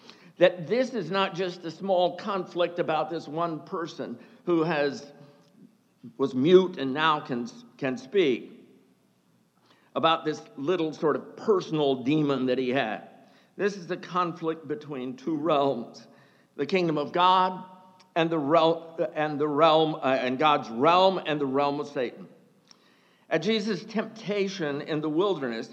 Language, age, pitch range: English, 60-79, 140-210 Hz